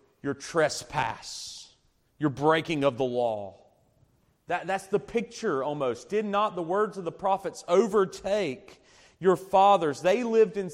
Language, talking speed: English, 140 wpm